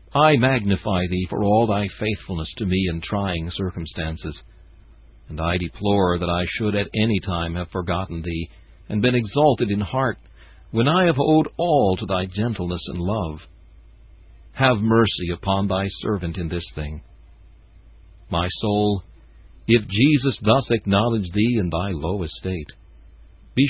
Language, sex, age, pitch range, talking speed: English, male, 60-79, 85-115 Hz, 150 wpm